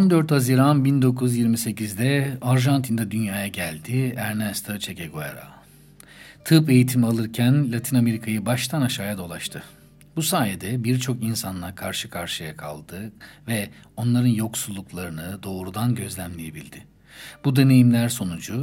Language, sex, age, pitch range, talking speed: Turkish, male, 50-69, 105-140 Hz, 105 wpm